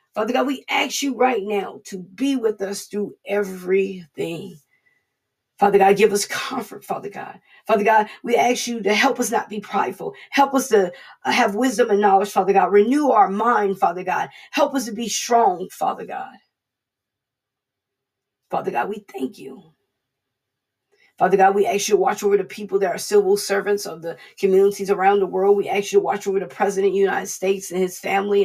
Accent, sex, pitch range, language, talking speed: American, female, 200-270 Hz, English, 195 wpm